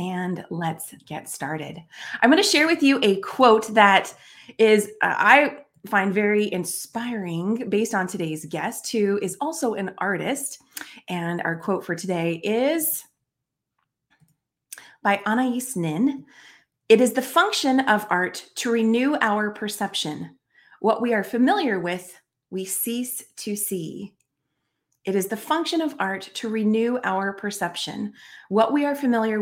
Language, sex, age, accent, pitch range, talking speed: English, female, 30-49, American, 185-250 Hz, 145 wpm